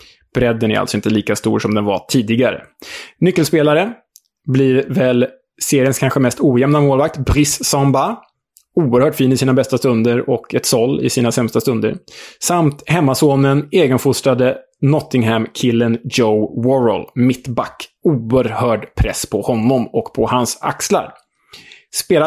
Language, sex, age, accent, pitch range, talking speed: Swedish, male, 20-39, Norwegian, 115-135 Hz, 135 wpm